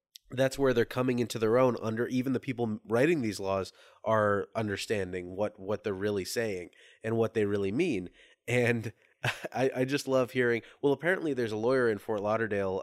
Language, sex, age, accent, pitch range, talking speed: English, male, 30-49, American, 110-145 Hz, 185 wpm